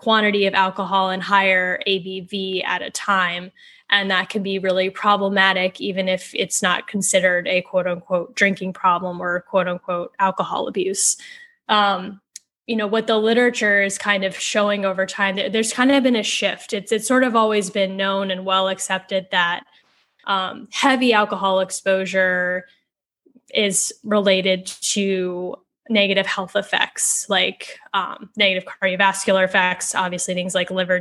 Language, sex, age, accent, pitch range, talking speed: English, female, 10-29, American, 185-215 Hz, 150 wpm